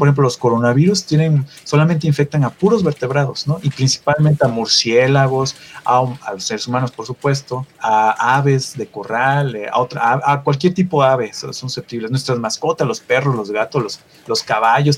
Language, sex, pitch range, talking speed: Spanish, male, 120-145 Hz, 175 wpm